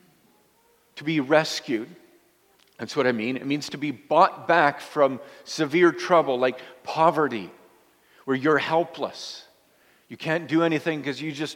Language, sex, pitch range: English, male, 135-180 Hz